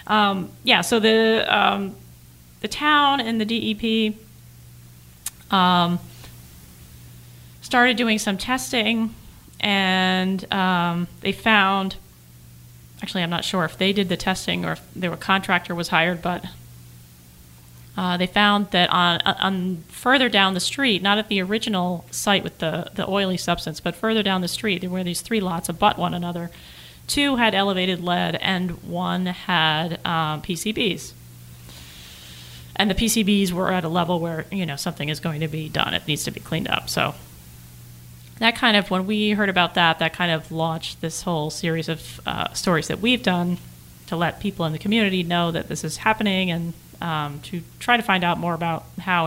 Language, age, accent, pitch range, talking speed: English, 30-49, American, 155-195 Hz, 175 wpm